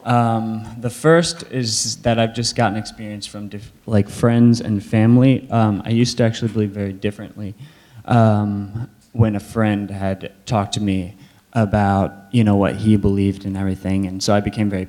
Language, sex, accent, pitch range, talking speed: English, male, American, 100-115 Hz, 175 wpm